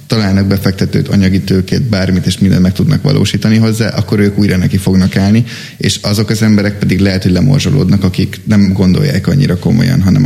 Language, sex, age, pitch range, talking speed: Hungarian, male, 10-29, 95-115 Hz, 175 wpm